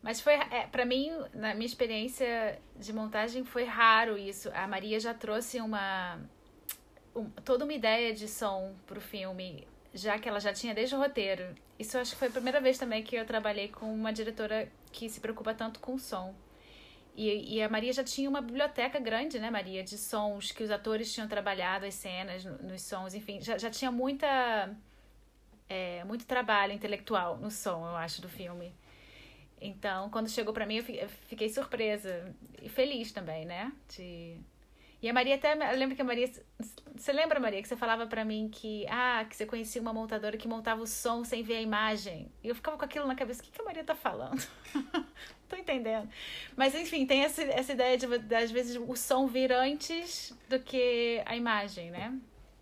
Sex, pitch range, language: female, 205-255 Hz, Spanish